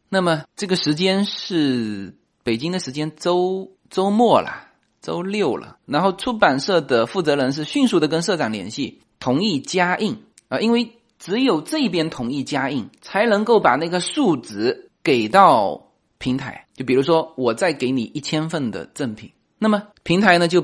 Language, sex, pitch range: Chinese, male, 140-210 Hz